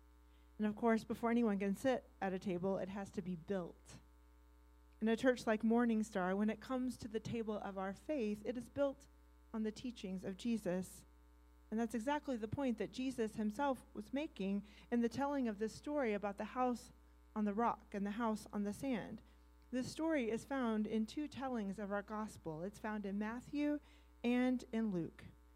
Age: 40-59